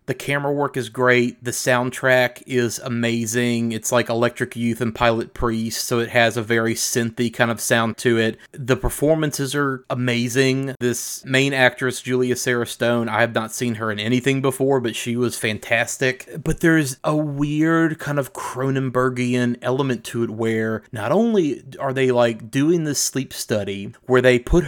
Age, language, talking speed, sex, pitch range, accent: 30-49, English, 175 wpm, male, 115-135 Hz, American